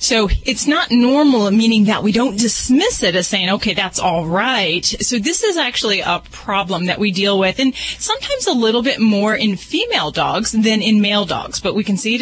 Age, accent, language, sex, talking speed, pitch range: 30-49, American, English, female, 215 wpm, 195-240 Hz